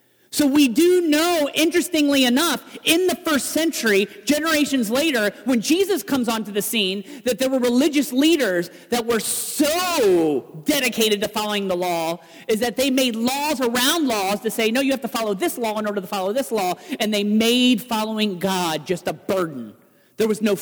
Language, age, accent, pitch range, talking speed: English, 40-59, American, 190-265 Hz, 185 wpm